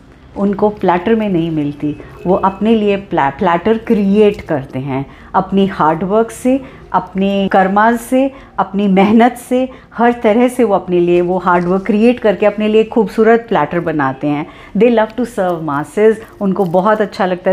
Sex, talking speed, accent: female, 160 wpm, native